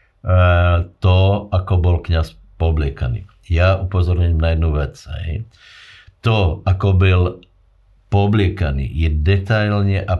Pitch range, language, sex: 85-100 Hz, Slovak, male